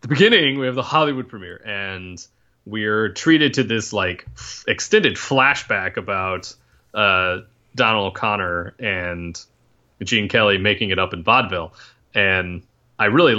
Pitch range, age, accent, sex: 95-120 Hz, 30-49, American, male